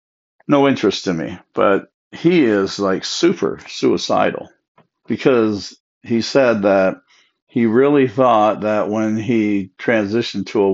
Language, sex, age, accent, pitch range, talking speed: English, male, 50-69, American, 95-115 Hz, 130 wpm